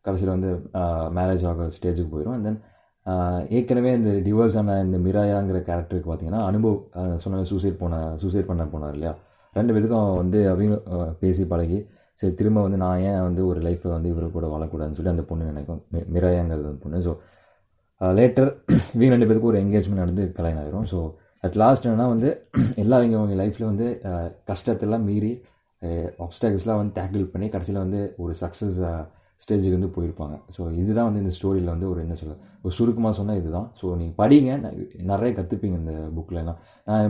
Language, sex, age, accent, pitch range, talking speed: Tamil, male, 20-39, native, 90-105 Hz, 160 wpm